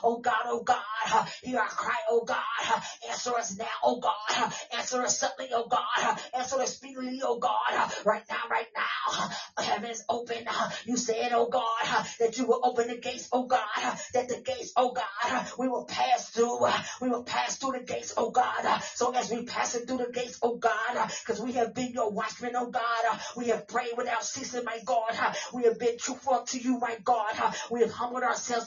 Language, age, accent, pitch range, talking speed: English, 30-49, American, 225-250 Hz, 200 wpm